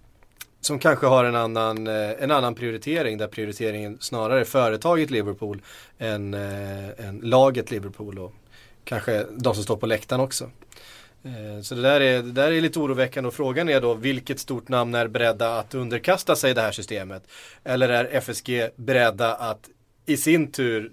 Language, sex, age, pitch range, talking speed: Swedish, male, 30-49, 110-135 Hz, 165 wpm